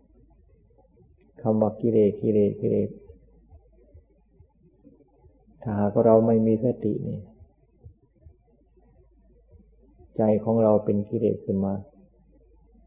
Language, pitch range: Thai, 105-115 Hz